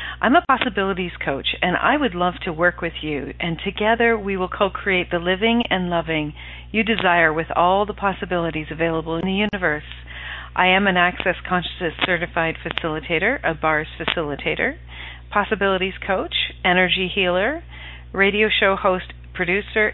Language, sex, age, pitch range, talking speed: English, female, 40-59, 145-200 Hz, 145 wpm